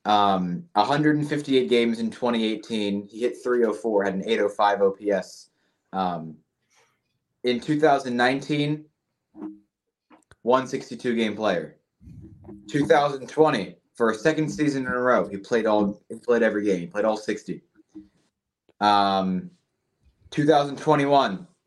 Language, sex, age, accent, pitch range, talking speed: English, male, 20-39, American, 100-125 Hz, 105 wpm